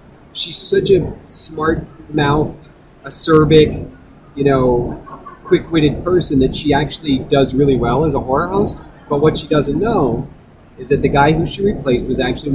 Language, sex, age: English, male, 30-49